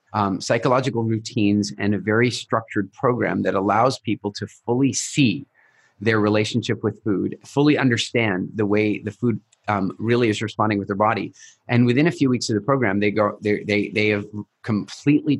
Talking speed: 180 wpm